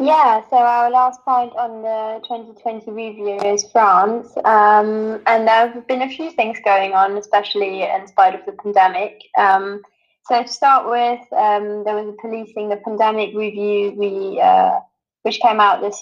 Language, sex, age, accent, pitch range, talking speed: English, female, 20-39, British, 205-240 Hz, 170 wpm